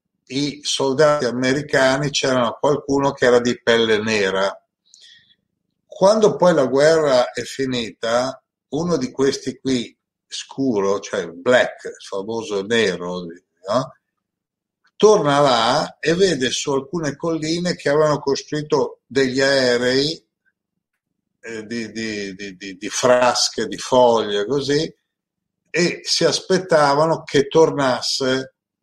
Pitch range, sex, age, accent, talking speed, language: 120-155 Hz, male, 60-79, native, 110 wpm, Italian